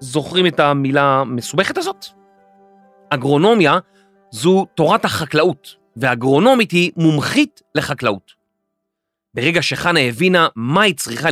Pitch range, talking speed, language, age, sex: 135-200 Hz, 100 wpm, Hebrew, 30-49, male